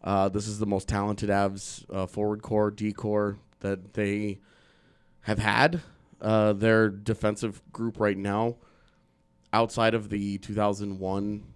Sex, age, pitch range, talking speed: male, 20-39, 100-110 Hz, 135 wpm